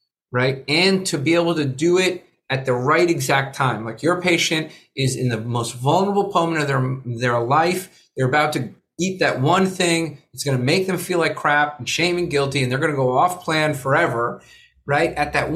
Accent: American